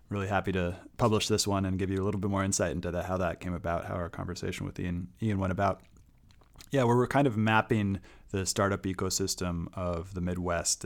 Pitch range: 90-105 Hz